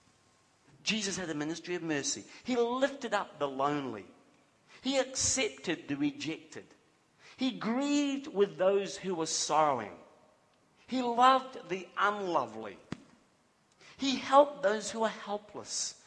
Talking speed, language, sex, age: 120 wpm, English, male, 50-69